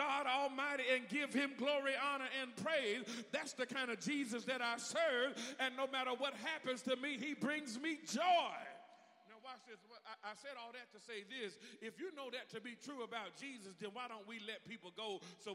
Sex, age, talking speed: male, 40-59, 210 wpm